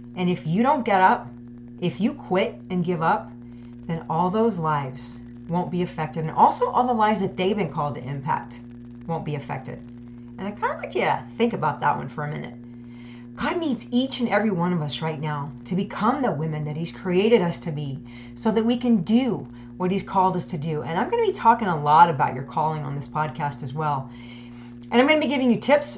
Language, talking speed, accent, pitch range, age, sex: English, 235 wpm, American, 120-200 Hz, 40-59, female